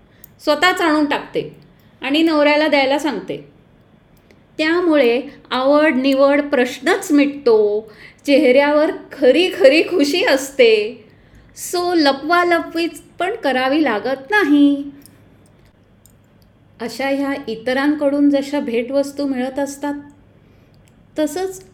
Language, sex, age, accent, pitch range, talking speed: Marathi, female, 20-39, native, 195-280 Hz, 85 wpm